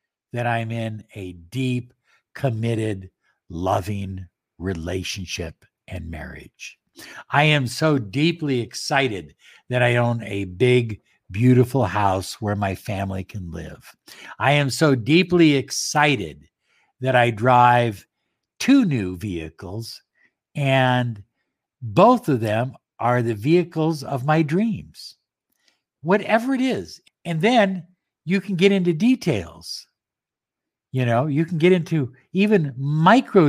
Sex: male